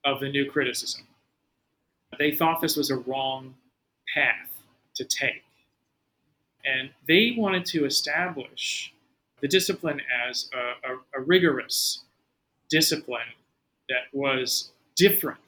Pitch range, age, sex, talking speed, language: 130-160 Hz, 40-59, male, 110 wpm, English